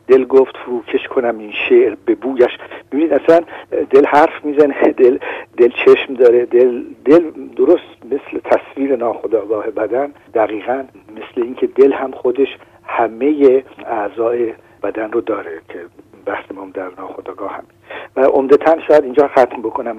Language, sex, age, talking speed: Persian, male, 50-69, 145 wpm